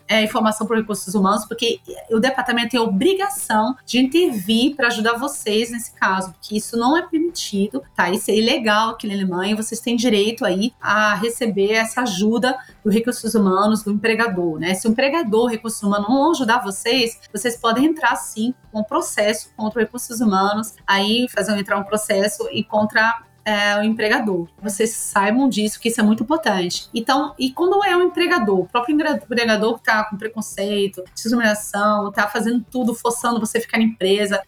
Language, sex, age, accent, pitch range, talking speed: Portuguese, female, 30-49, Brazilian, 210-240 Hz, 185 wpm